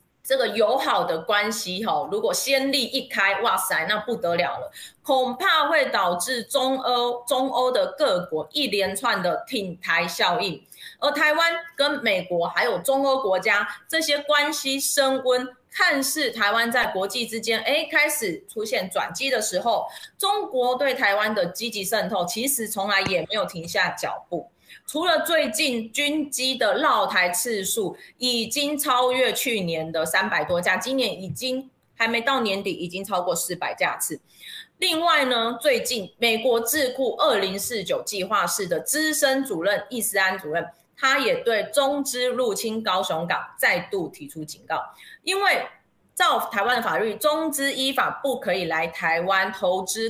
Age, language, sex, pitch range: 20-39, Chinese, female, 195-285 Hz